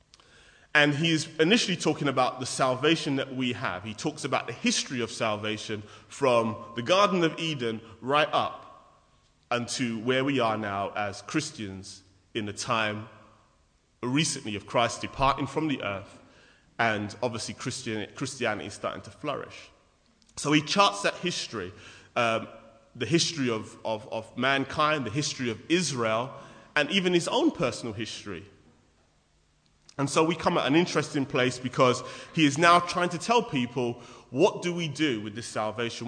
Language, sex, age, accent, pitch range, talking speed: English, male, 30-49, British, 110-145 Hz, 155 wpm